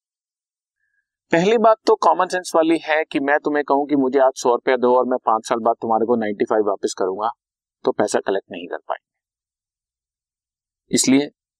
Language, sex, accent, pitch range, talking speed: Hindi, male, native, 105-165 Hz, 180 wpm